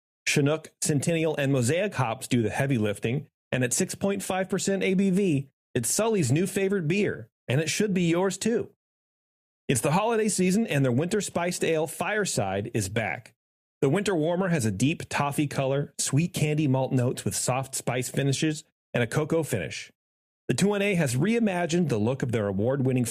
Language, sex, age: English, male, 30-49